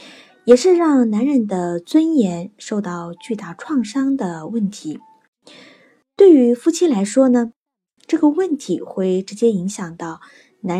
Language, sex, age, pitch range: Chinese, female, 20-39, 185-285 Hz